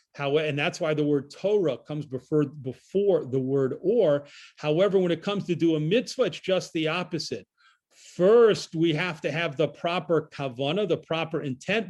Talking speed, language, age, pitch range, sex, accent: 175 wpm, English, 40-59, 145-185 Hz, male, American